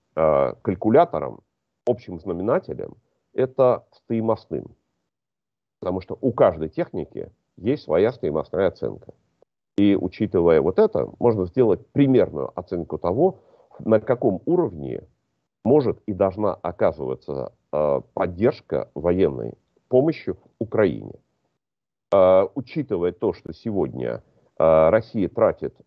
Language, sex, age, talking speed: Russian, male, 40-59, 95 wpm